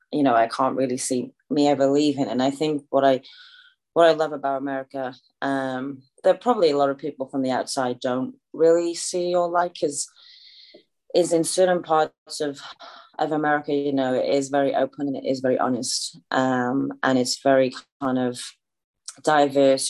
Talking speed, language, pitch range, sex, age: 180 wpm, English, 130-145 Hz, female, 30-49